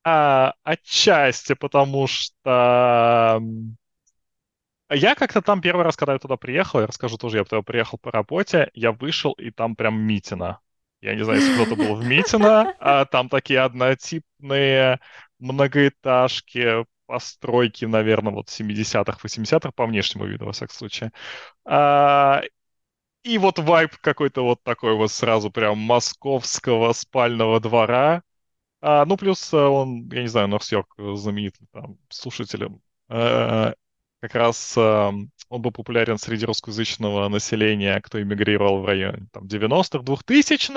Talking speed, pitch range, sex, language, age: 135 wpm, 110-140 Hz, male, Russian, 20-39